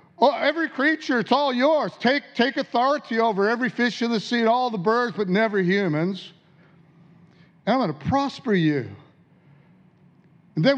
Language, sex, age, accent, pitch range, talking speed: English, male, 60-79, American, 155-200 Hz, 165 wpm